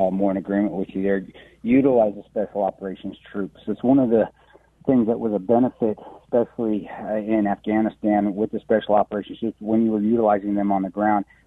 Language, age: English, 40-59